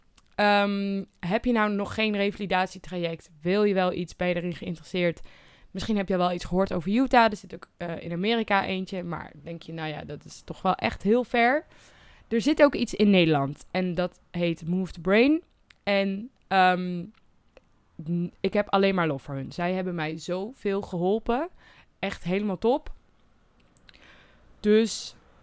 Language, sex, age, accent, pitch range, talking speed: Dutch, female, 20-39, Dutch, 165-205 Hz, 170 wpm